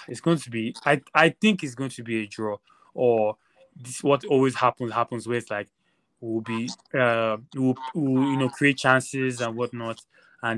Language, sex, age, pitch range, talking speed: English, male, 20-39, 120-150 Hz, 195 wpm